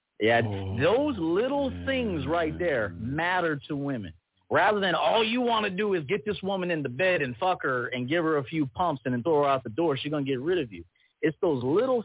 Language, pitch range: English, 130-195 Hz